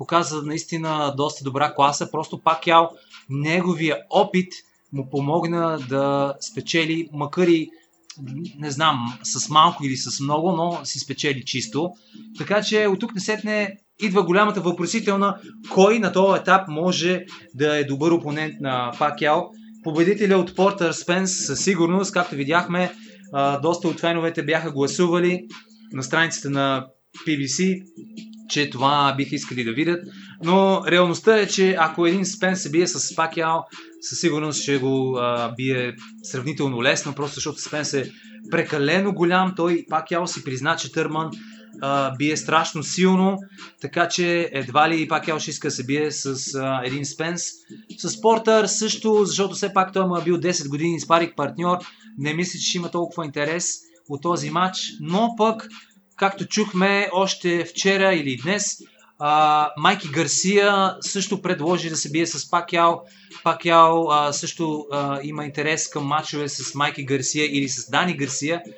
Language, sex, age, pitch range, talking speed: Bulgarian, male, 20-39, 150-185 Hz, 150 wpm